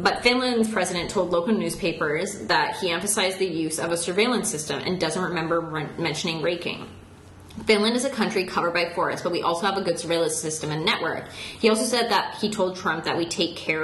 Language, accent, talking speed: English, American, 210 wpm